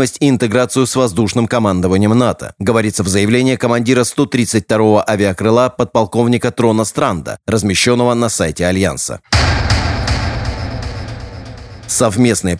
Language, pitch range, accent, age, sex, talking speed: Russian, 105-130 Hz, native, 30-49, male, 95 wpm